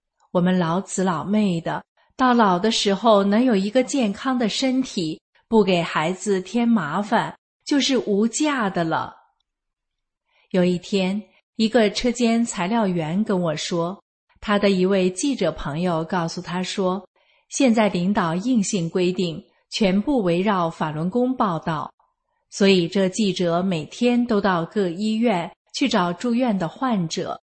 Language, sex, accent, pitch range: English, female, Chinese, 180-220 Hz